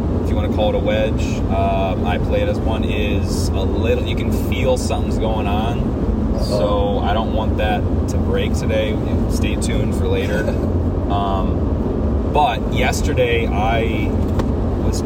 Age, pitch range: 20-39, 85-105 Hz